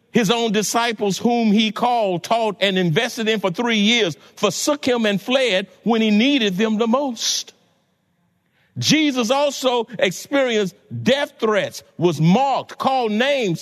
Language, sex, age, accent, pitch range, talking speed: English, male, 50-69, American, 190-245 Hz, 140 wpm